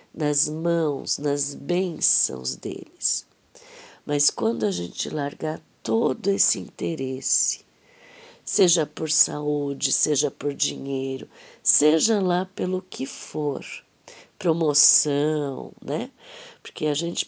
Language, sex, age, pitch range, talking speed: Portuguese, female, 50-69, 145-205 Hz, 100 wpm